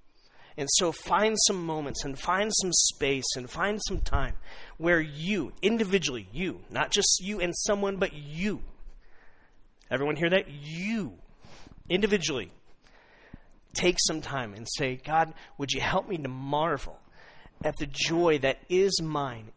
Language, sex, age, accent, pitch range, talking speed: English, male, 40-59, American, 135-175 Hz, 145 wpm